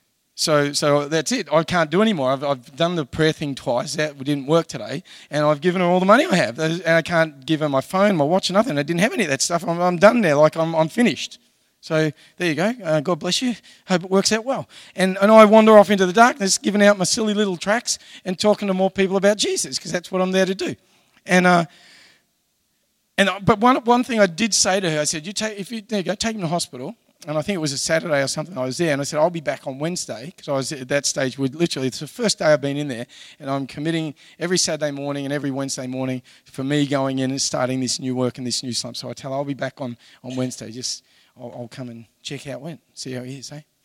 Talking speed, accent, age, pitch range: 275 wpm, Australian, 40-59, 140-190 Hz